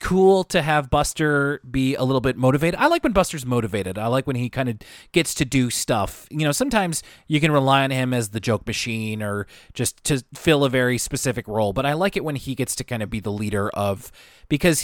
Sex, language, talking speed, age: male, English, 240 wpm, 30-49